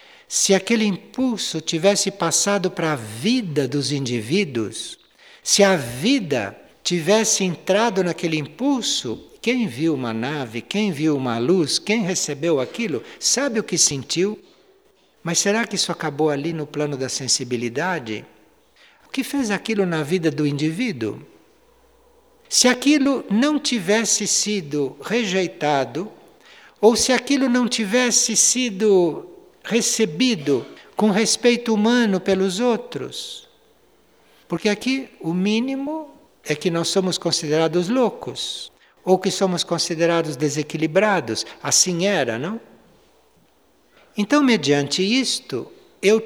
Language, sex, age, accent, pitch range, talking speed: Portuguese, male, 60-79, Brazilian, 170-245 Hz, 115 wpm